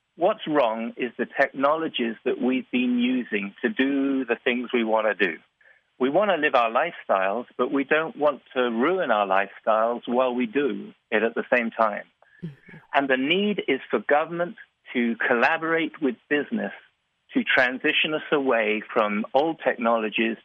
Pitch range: 115-155 Hz